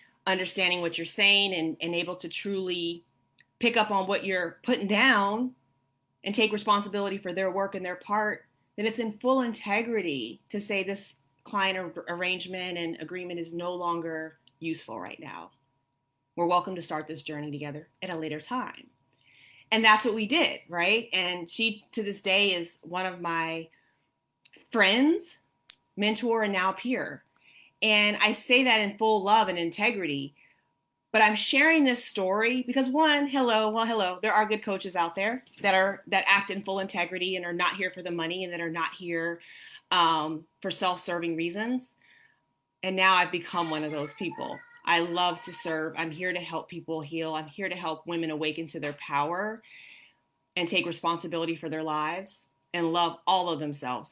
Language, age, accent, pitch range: English, 30-49, American, 165-210 Hz